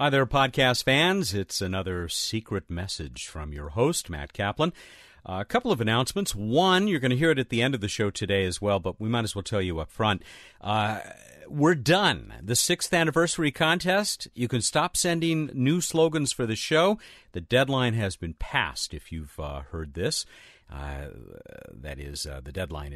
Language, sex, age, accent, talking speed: English, male, 50-69, American, 195 wpm